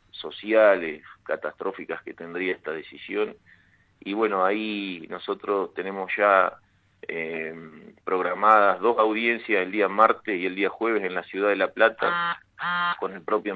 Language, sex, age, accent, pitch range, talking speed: Spanish, male, 40-59, Argentinian, 95-120 Hz, 140 wpm